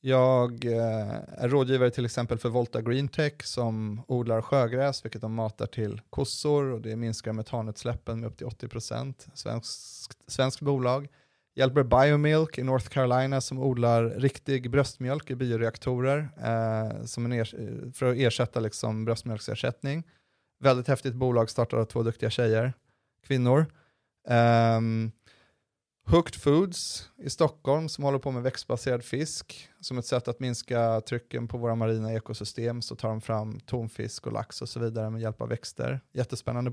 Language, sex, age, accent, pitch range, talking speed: English, male, 30-49, Swedish, 110-130 Hz, 150 wpm